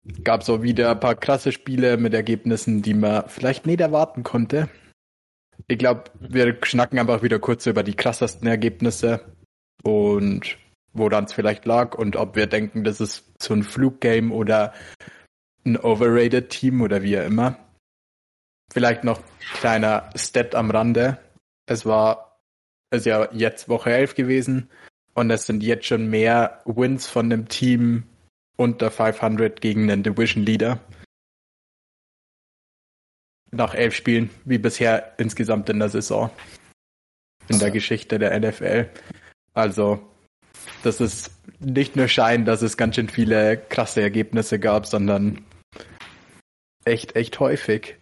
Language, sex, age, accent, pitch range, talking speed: German, male, 20-39, German, 105-120 Hz, 140 wpm